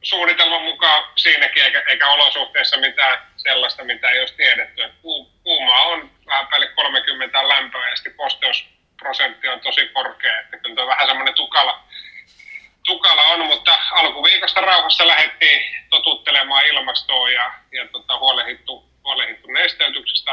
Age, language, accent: 30-49, Finnish, native